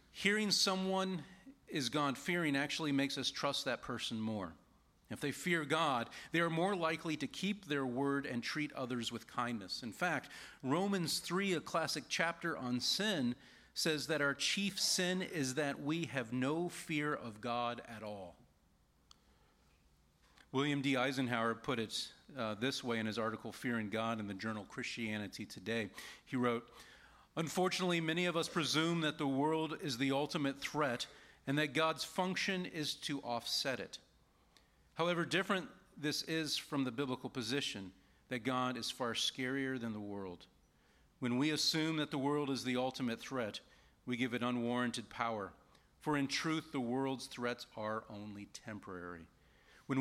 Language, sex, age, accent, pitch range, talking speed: English, male, 40-59, American, 115-155 Hz, 160 wpm